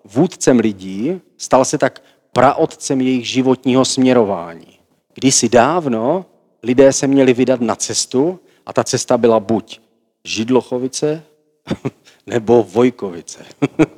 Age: 40-59